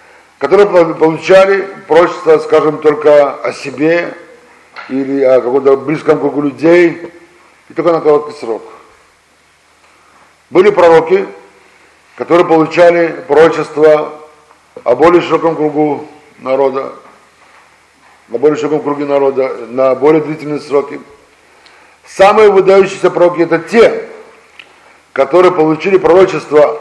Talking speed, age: 100 wpm, 50-69